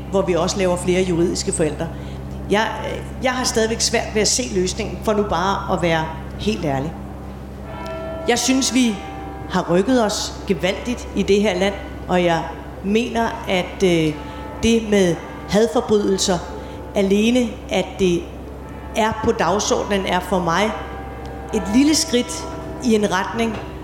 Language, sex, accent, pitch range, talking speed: Danish, female, native, 180-225 Hz, 140 wpm